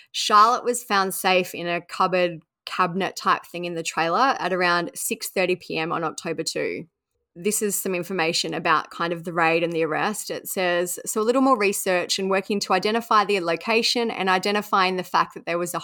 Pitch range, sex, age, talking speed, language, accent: 175-210 Hz, female, 20-39, 195 wpm, English, Australian